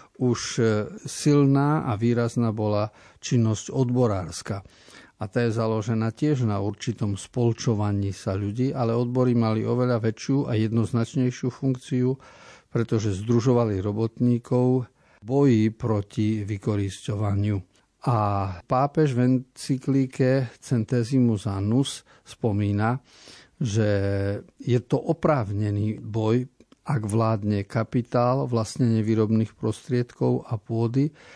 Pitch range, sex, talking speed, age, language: 105-125 Hz, male, 100 wpm, 50-69, Slovak